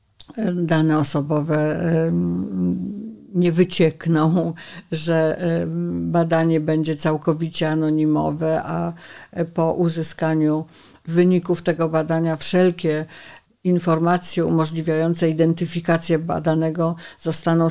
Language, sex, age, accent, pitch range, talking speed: Polish, female, 50-69, native, 160-175 Hz, 70 wpm